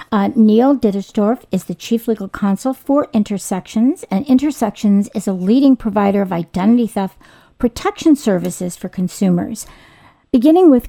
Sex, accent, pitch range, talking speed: female, American, 195-235 Hz, 140 wpm